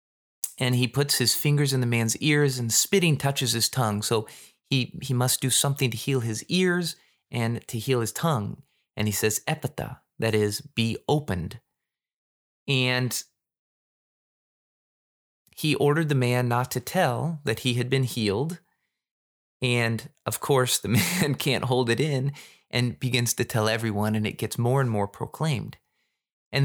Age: 20-39